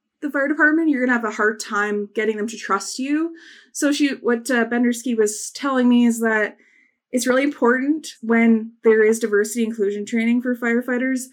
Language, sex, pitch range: English, female, 215-260 Hz